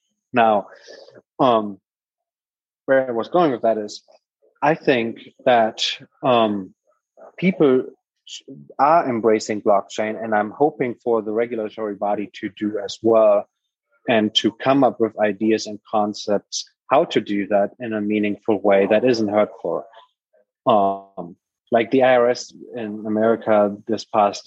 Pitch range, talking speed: 105-130 Hz, 135 wpm